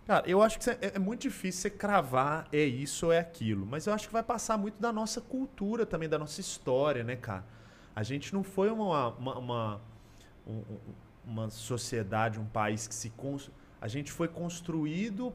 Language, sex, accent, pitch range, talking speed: Portuguese, male, Brazilian, 110-160 Hz, 190 wpm